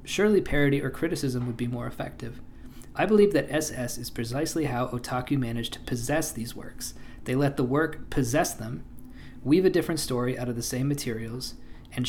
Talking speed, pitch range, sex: 185 wpm, 125-150 Hz, male